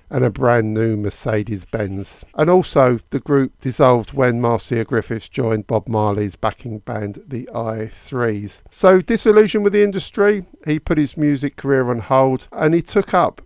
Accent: British